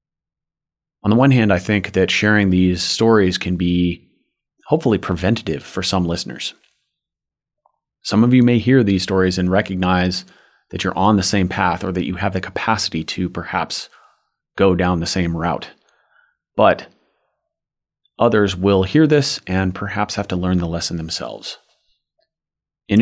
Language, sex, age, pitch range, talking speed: English, male, 30-49, 90-105 Hz, 155 wpm